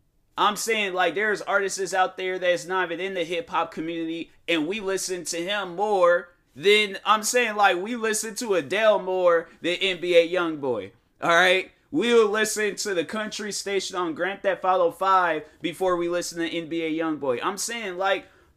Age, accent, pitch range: 20-39, American, 155-195 Hz